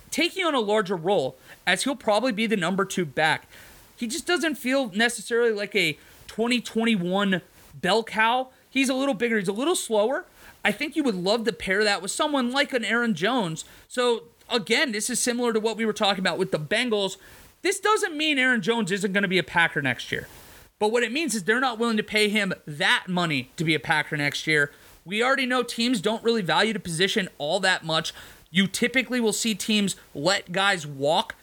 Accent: American